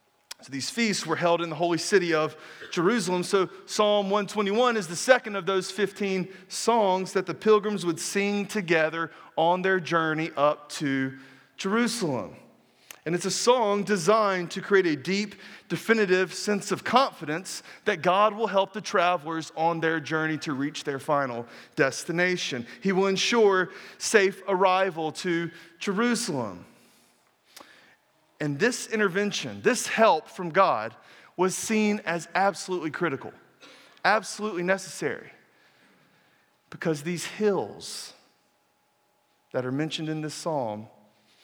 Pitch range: 155-195 Hz